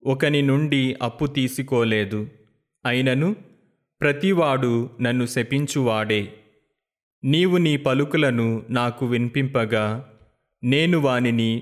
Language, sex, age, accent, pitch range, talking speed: Telugu, male, 30-49, native, 110-140 Hz, 75 wpm